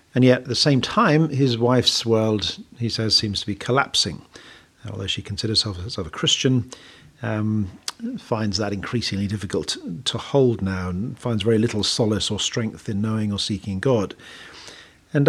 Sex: male